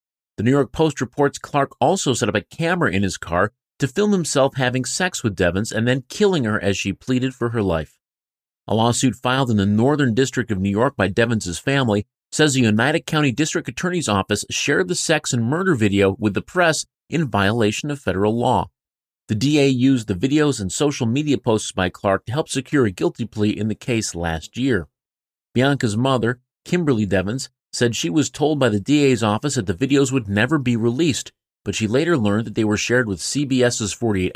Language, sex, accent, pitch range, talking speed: English, male, American, 100-135 Hz, 205 wpm